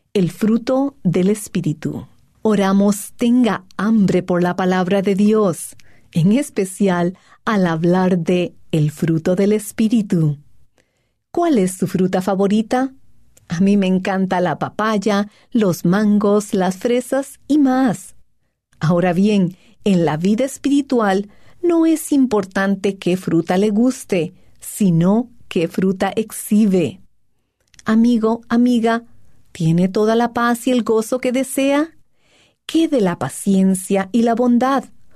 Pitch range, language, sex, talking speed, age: 175-235 Hz, English, female, 125 wpm, 40-59